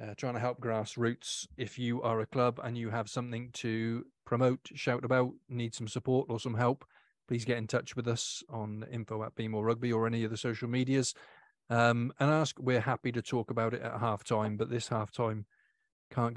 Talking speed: 210 wpm